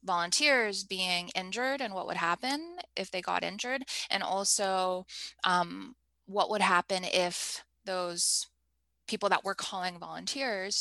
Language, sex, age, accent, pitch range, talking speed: English, female, 20-39, American, 175-205 Hz, 135 wpm